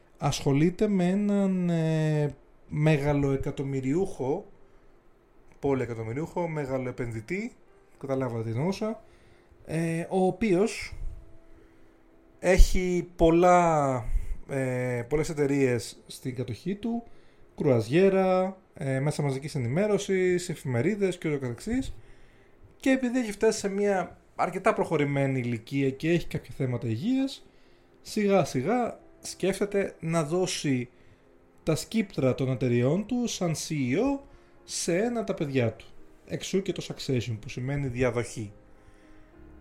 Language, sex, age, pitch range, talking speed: Greek, male, 30-49, 130-185 Hz, 105 wpm